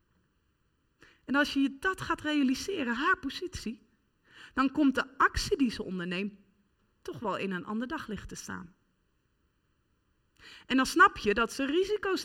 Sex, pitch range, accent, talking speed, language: female, 200-305 Hz, Dutch, 145 wpm, Dutch